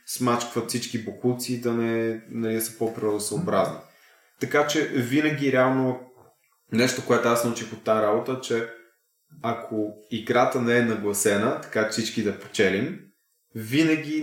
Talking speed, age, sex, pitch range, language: 130 wpm, 20-39, male, 110-130 Hz, Bulgarian